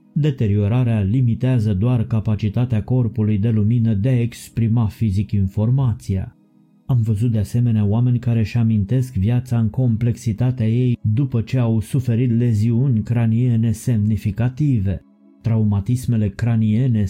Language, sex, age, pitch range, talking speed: Romanian, male, 30-49, 105-125 Hz, 115 wpm